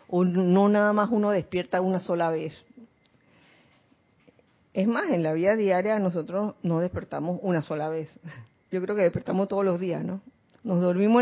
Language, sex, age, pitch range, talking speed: Spanish, female, 40-59, 165-210 Hz, 165 wpm